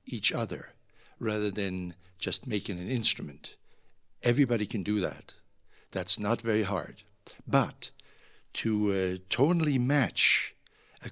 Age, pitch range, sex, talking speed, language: 60-79, 100-125 Hz, male, 120 wpm, English